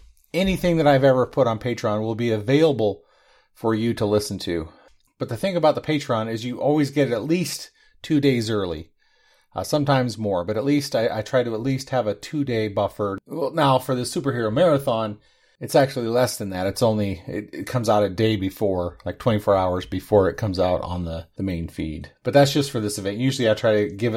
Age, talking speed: 30-49, 225 wpm